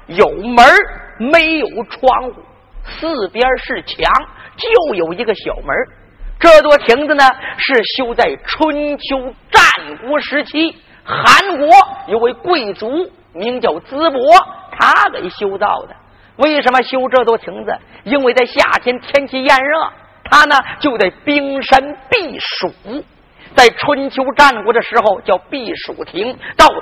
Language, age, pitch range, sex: Chinese, 40-59, 250-315 Hz, male